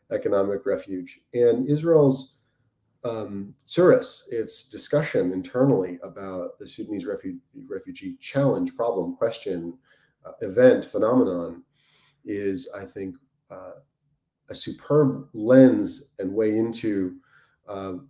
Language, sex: English, male